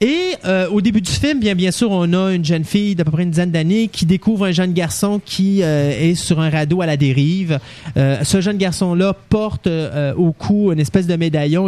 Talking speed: 235 wpm